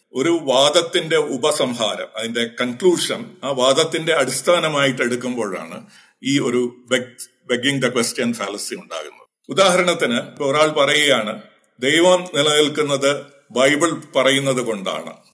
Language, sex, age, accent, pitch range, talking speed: Malayalam, male, 50-69, native, 130-165 Hz, 80 wpm